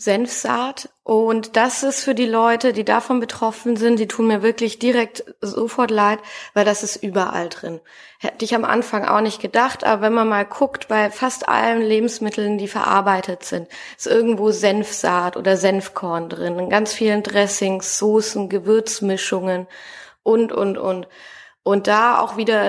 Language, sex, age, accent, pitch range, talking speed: German, female, 20-39, German, 190-220 Hz, 160 wpm